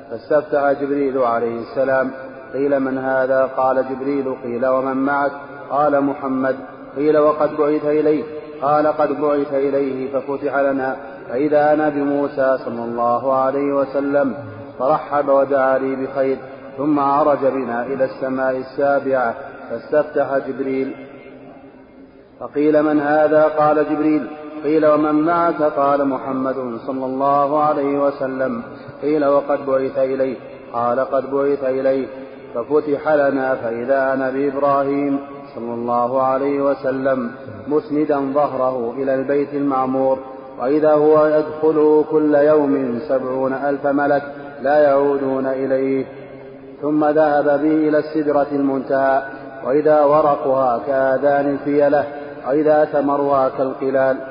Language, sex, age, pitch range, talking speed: Arabic, male, 30-49, 130-145 Hz, 115 wpm